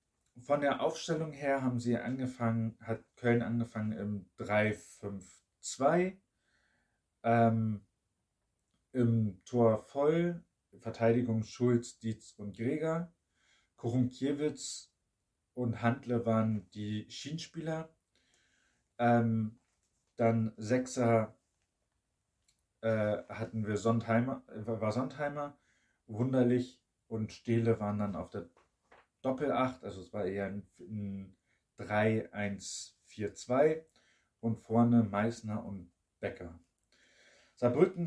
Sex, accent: male, German